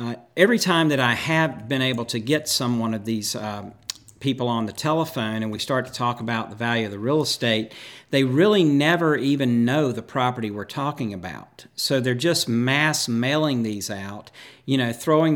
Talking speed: 195 wpm